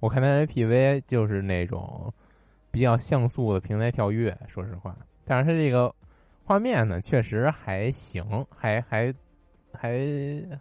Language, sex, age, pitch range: Chinese, male, 20-39, 95-125 Hz